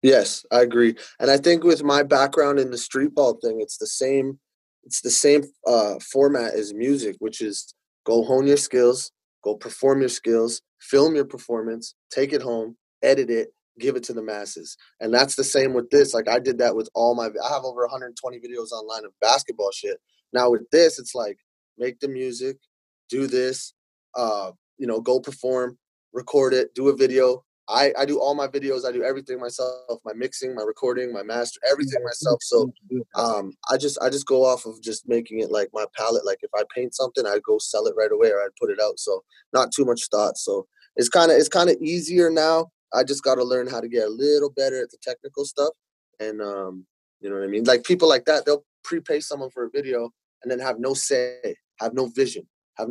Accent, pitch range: American, 120-150 Hz